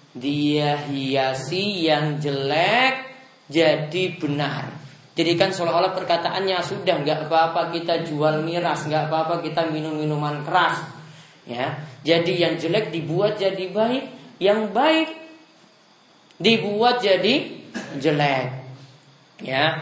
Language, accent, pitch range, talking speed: Indonesian, native, 145-180 Hz, 105 wpm